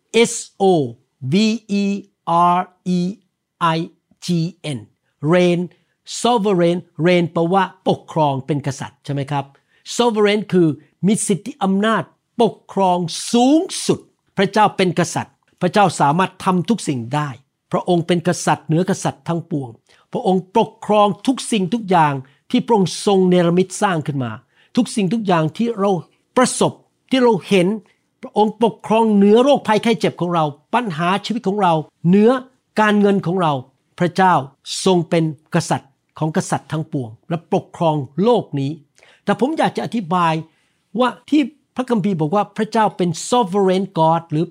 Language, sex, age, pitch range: Thai, male, 60-79, 160-205 Hz